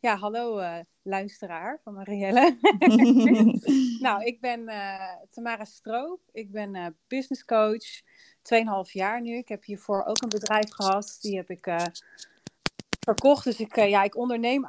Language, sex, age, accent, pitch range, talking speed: Dutch, female, 30-49, Dutch, 185-235 Hz, 155 wpm